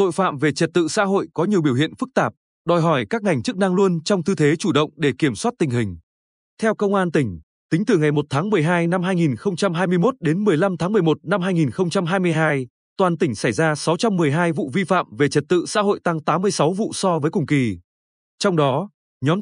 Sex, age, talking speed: male, 20-39, 220 wpm